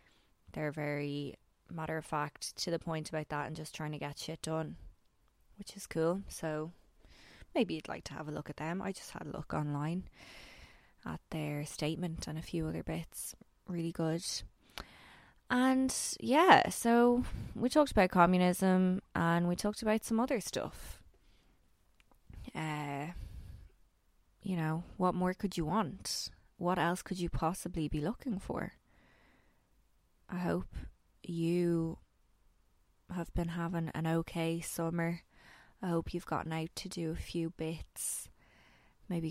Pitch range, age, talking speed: 150-180 Hz, 20-39, 145 wpm